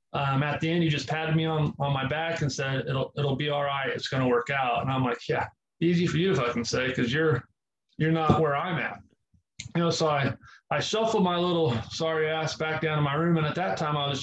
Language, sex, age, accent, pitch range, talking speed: English, male, 30-49, American, 135-160 Hz, 265 wpm